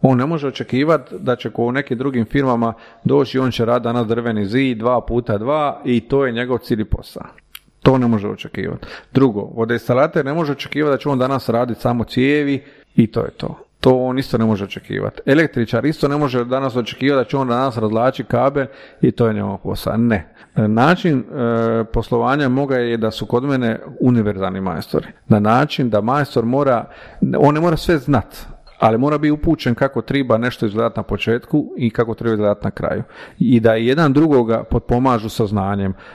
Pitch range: 115-135 Hz